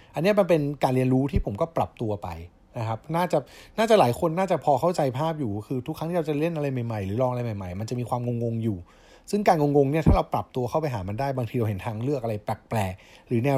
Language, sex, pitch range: Thai, male, 110-155 Hz